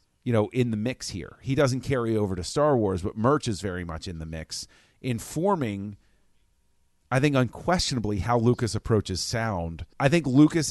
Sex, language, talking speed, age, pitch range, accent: male, English, 180 wpm, 40-59, 95-120 Hz, American